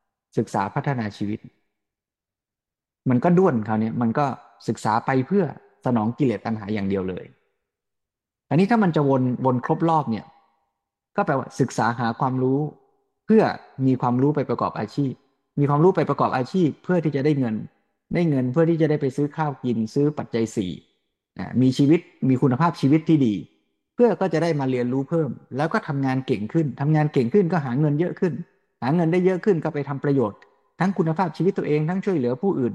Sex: male